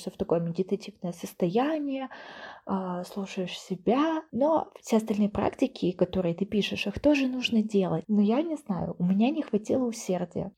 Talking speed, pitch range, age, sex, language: 150 wpm, 185-225 Hz, 20-39, female, Russian